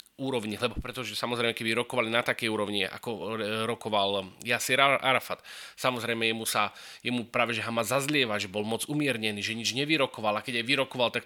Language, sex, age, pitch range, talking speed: Slovak, male, 30-49, 115-140 Hz, 180 wpm